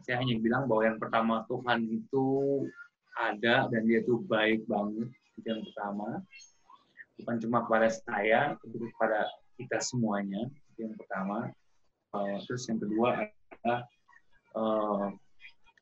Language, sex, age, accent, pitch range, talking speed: Indonesian, male, 20-39, native, 110-135 Hz, 115 wpm